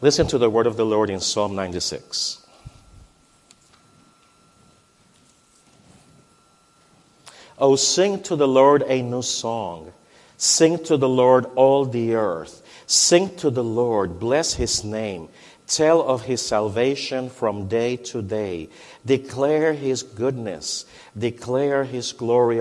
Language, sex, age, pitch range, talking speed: English, male, 50-69, 105-135 Hz, 120 wpm